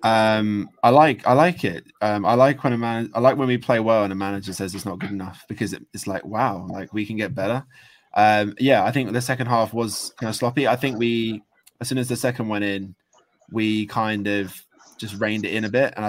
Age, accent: 20-39, British